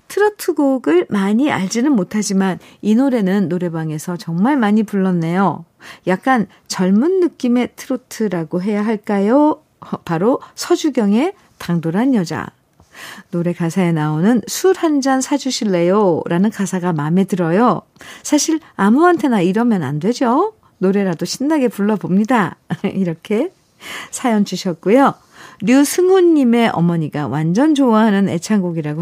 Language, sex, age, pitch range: Korean, female, 50-69, 180-270 Hz